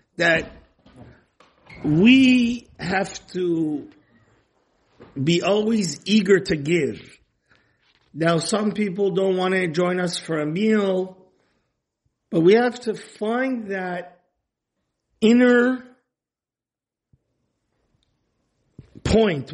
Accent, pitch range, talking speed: American, 165-210 Hz, 85 wpm